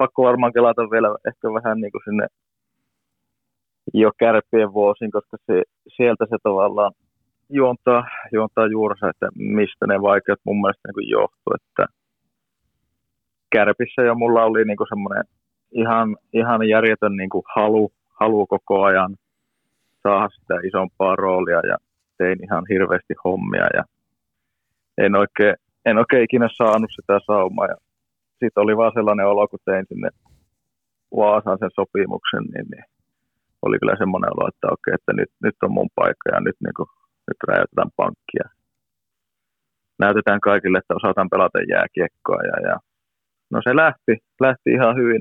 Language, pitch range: Finnish, 105-120 Hz